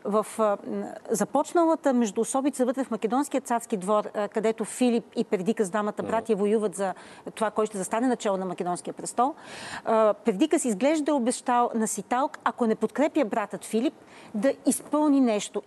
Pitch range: 220-275 Hz